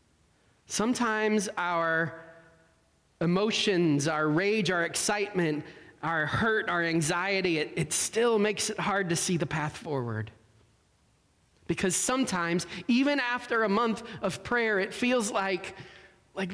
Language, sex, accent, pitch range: English, male, American, 150-210 Hz